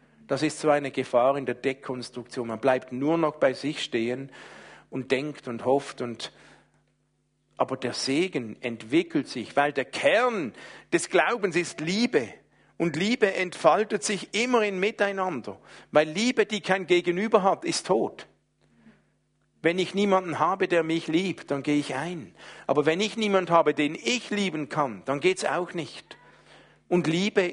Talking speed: 160 wpm